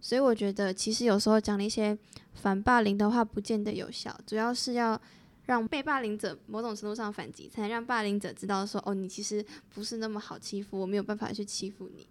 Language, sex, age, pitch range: Chinese, female, 10-29, 195-230 Hz